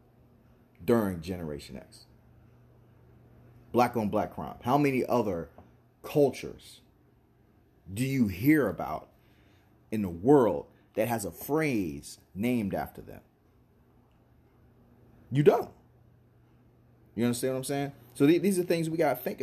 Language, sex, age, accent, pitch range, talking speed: English, male, 30-49, American, 100-125 Hz, 125 wpm